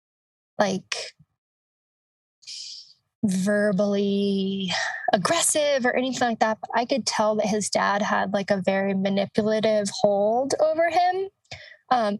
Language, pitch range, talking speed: English, 200-235 Hz, 115 wpm